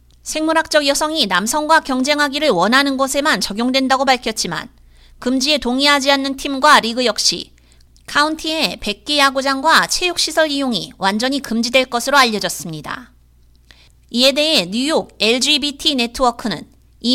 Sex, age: female, 30-49